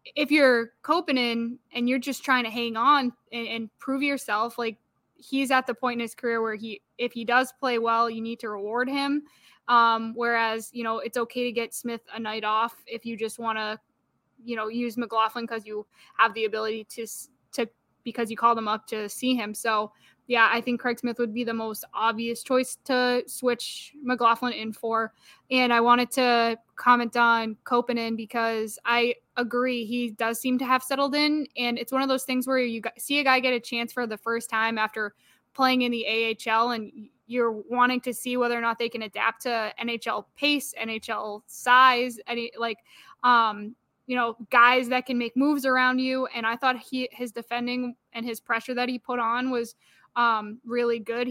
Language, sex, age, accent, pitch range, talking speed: English, female, 10-29, American, 230-255 Hz, 205 wpm